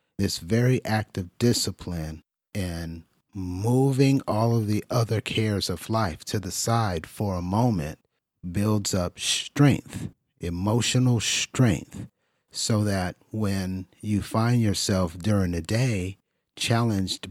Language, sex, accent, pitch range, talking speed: English, male, American, 90-115 Hz, 120 wpm